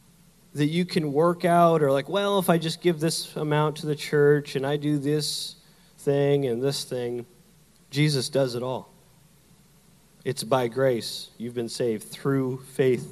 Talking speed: 170 wpm